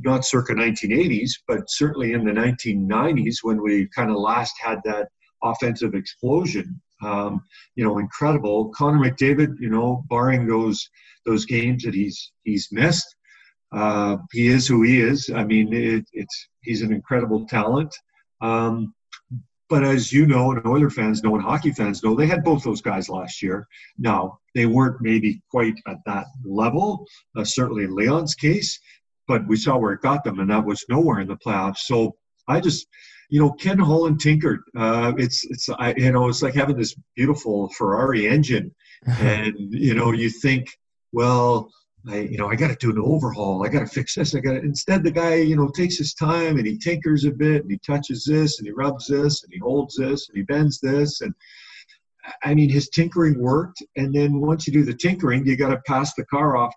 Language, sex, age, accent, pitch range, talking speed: English, male, 50-69, American, 110-150 Hz, 195 wpm